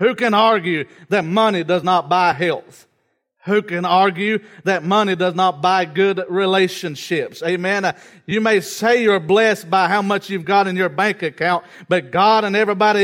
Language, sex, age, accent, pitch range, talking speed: English, male, 40-59, American, 170-210 Hz, 175 wpm